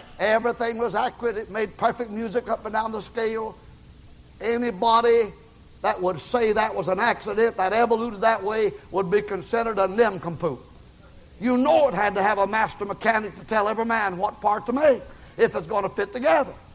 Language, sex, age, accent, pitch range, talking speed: English, male, 60-79, American, 200-225 Hz, 185 wpm